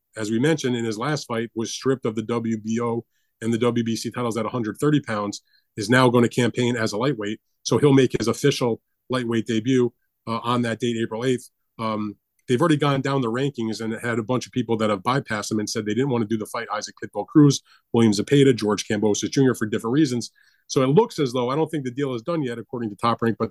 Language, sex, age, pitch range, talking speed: English, male, 30-49, 115-135 Hz, 240 wpm